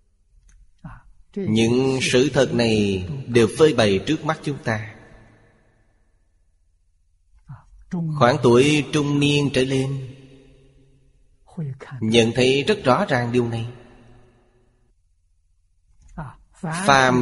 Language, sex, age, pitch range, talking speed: Vietnamese, male, 20-39, 90-130 Hz, 85 wpm